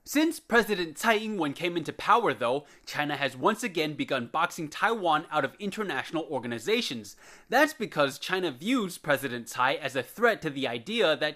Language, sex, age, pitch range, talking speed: English, male, 20-39, 145-230 Hz, 170 wpm